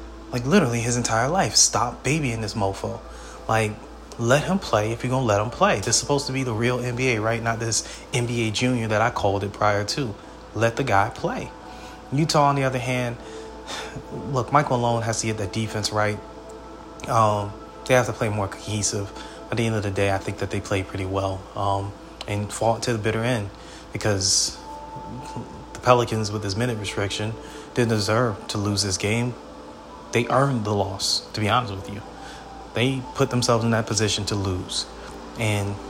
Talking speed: 190 wpm